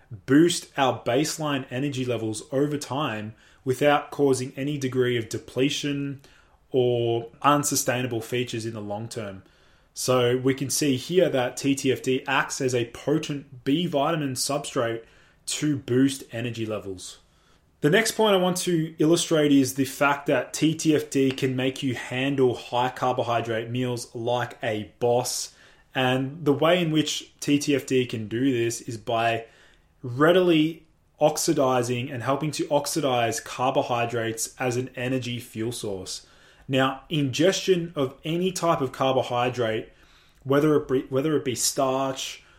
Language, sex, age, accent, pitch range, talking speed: English, male, 20-39, Australian, 120-145 Hz, 135 wpm